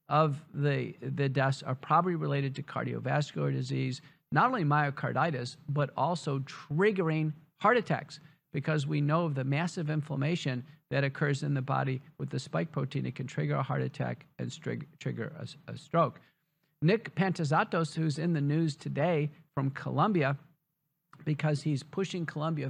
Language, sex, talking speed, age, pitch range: English, male, 155 wpm, 50-69, 135-160 Hz